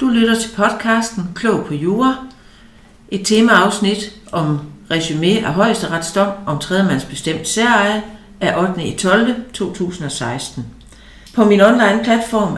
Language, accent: Danish, native